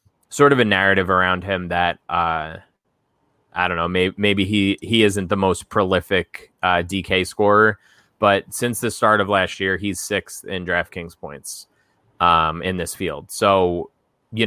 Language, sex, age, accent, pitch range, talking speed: English, male, 20-39, American, 90-105 Hz, 165 wpm